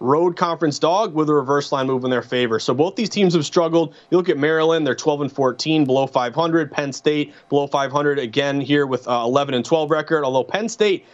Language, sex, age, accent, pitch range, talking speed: English, male, 30-49, American, 150-185 Hz, 225 wpm